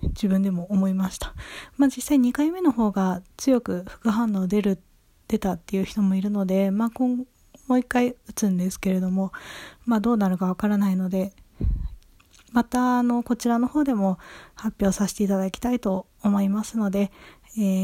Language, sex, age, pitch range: Japanese, female, 20-39, 190-230 Hz